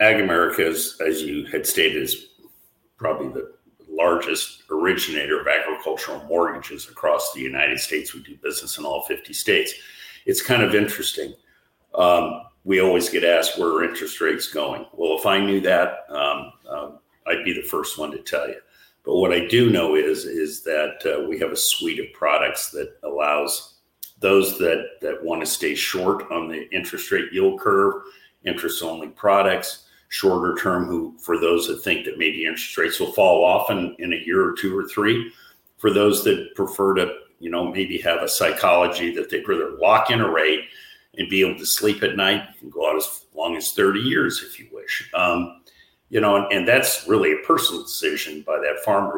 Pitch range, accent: 330-420 Hz, American